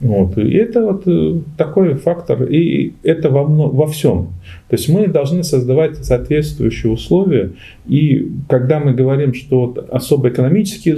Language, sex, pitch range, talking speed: Russian, male, 110-155 Hz, 140 wpm